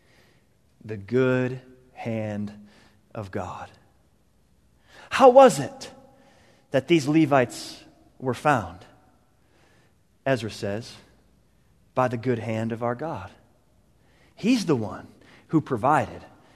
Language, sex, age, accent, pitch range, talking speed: English, male, 30-49, American, 115-160 Hz, 100 wpm